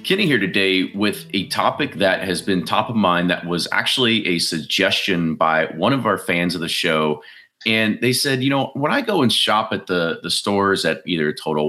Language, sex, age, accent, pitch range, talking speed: English, male, 30-49, American, 85-115 Hz, 215 wpm